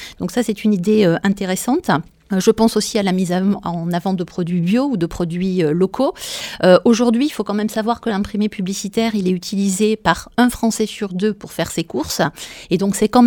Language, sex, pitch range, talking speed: French, female, 190-235 Hz, 215 wpm